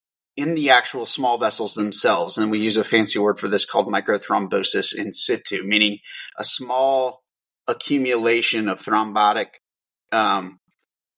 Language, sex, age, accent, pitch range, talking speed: English, male, 30-49, American, 115-155 Hz, 135 wpm